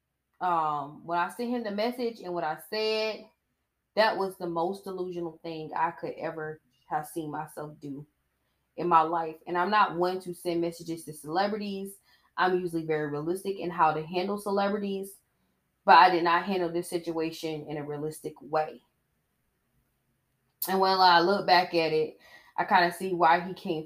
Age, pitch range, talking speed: 20-39, 130-175 Hz, 175 wpm